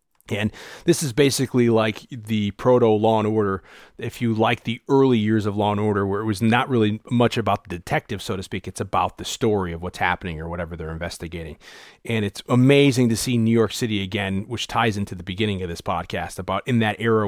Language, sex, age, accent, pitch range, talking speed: English, male, 30-49, American, 100-125 Hz, 220 wpm